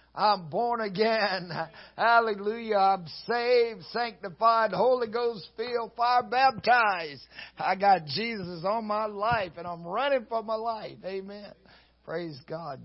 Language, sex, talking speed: English, male, 125 wpm